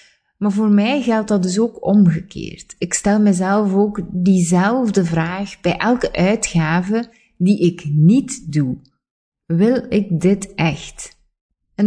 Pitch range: 165-200 Hz